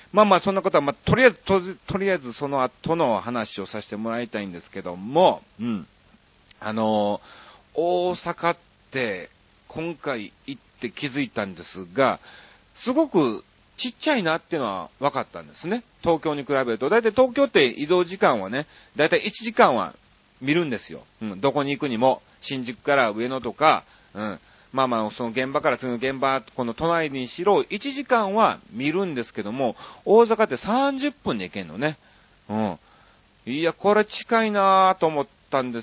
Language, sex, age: Japanese, male, 40-59